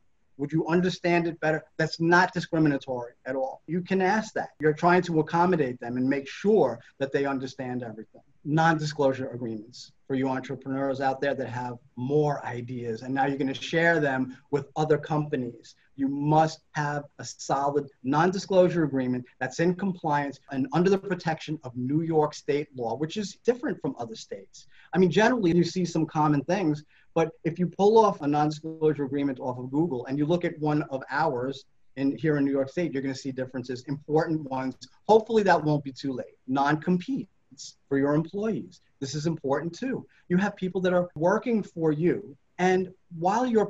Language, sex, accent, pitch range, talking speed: English, male, American, 135-180 Hz, 185 wpm